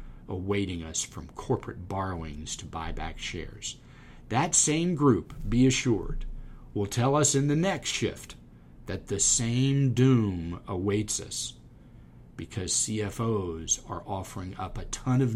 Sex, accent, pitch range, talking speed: male, American, 90-130 Hz, 135 wpm